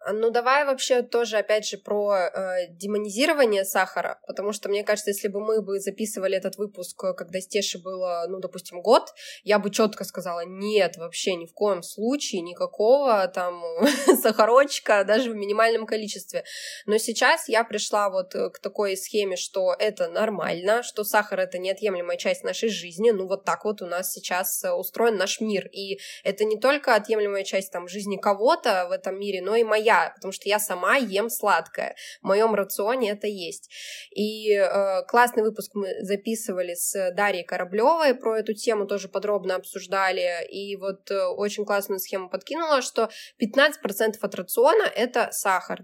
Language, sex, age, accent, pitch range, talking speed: Russian, female, 20-39, native, 195-230 Hz, 170 wpm